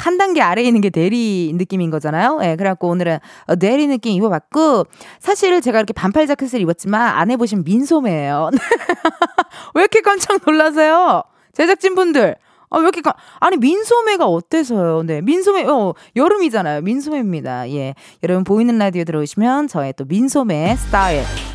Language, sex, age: Korean, female, 20-39